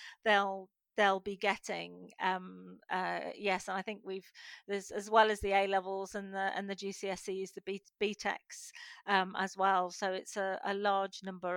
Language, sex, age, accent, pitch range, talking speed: English, female, 40-59, British, 180-245 Hz, 175 wpm